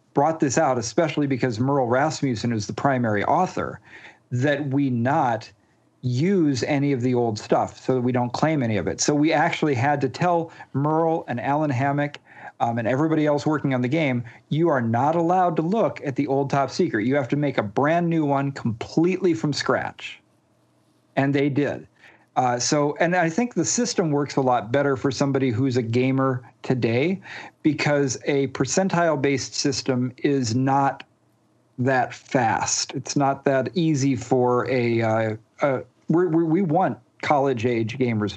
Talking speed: 165 wpm